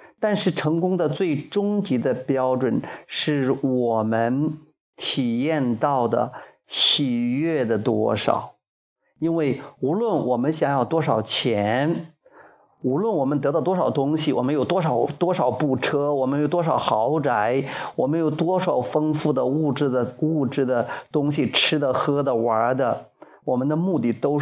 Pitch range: 125-155 Hz